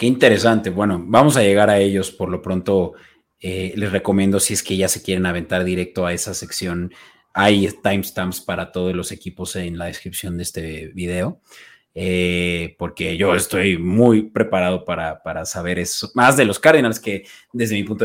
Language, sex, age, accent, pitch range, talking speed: Spanish, male, 30-49, Mexican, 90-115 Hz, 185 wpm